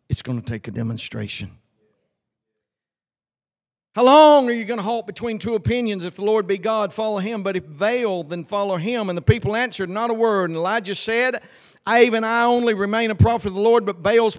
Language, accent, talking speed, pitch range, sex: English, American, 215 wpm, 135-220 Hz, male